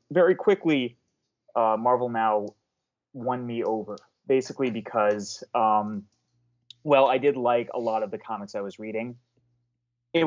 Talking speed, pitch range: 140 wpm, 105-125 Hz